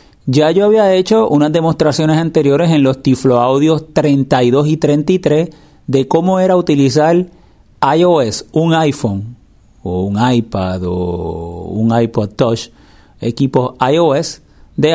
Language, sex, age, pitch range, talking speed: Spanish, male, 30-49, 115-155 Hz, 125 wpm